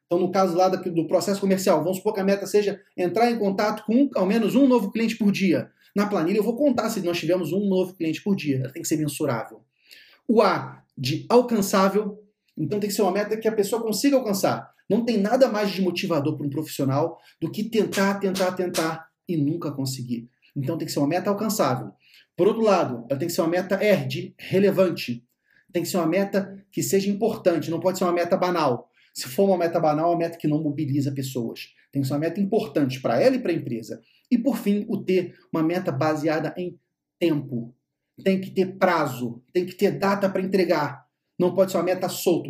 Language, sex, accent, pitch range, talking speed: Portuguese, male, Brazilian, 155-200 Hz, 220 wpm